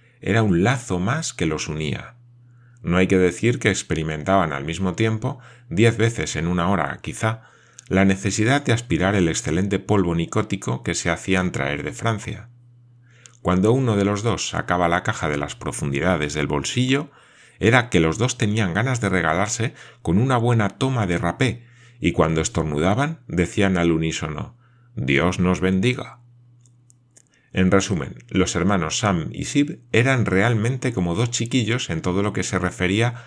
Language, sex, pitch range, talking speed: Spanish, male, 90-120 Hz, 160 wpm